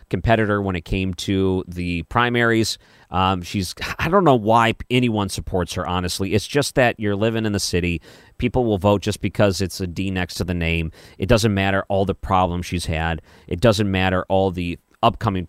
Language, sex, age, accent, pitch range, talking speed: English, male, 40-59, American, 90-110 Hz, 200 wpm